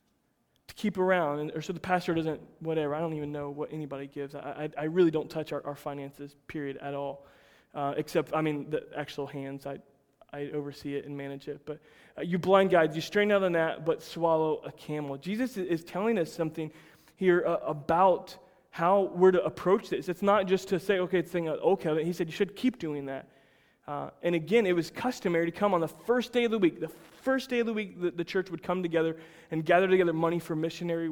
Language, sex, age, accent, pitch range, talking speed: English, male, 20-39, American, 145-175 Hz, 230 wpm